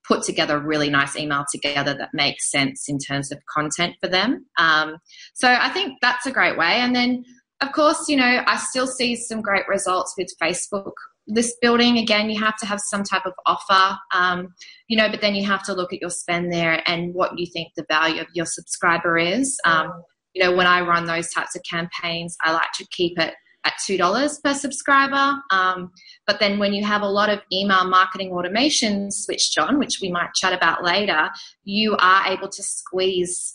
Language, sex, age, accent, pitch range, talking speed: English, female, 20-39, Australian, 175-225 Hz, 210 wpm